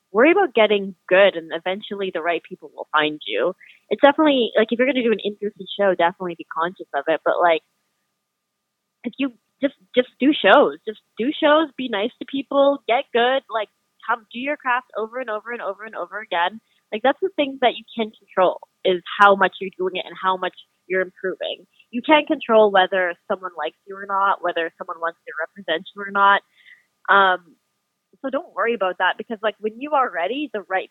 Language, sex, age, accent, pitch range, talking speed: English, female, 20-39, American, 190-260 Hz, 210 wpm